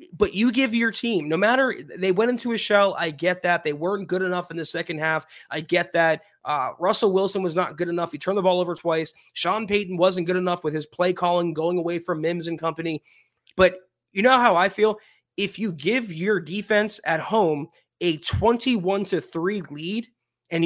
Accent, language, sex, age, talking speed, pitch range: American, English, male, 20-39, 210 wpm, 165-210 Hz